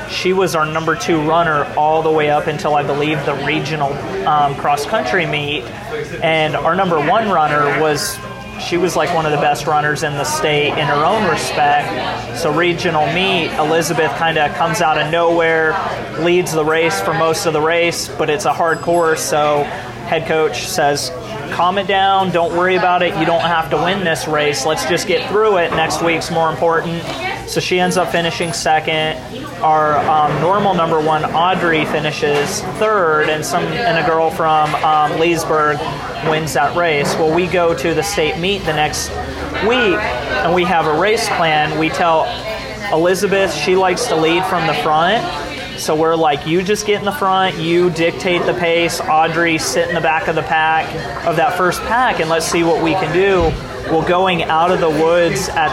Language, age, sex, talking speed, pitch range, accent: English, 30-49, male, 195 wpm, 155-175 Hz, American